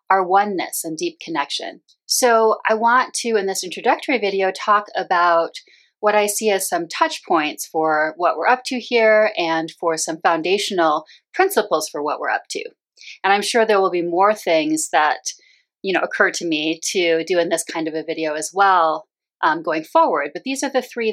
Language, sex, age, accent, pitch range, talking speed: English, female, 30-49, American, 170-250 Hz, 200 wpm